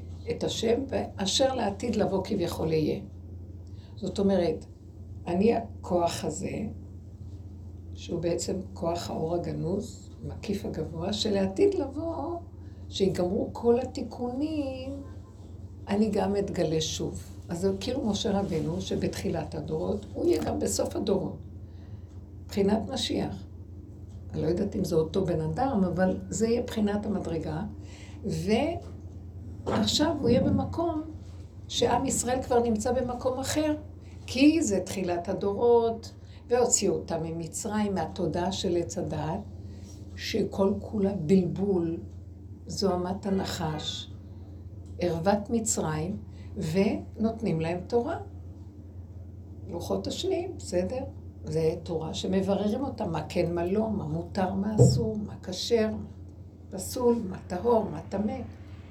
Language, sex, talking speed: Hebrew, female, 110 wpm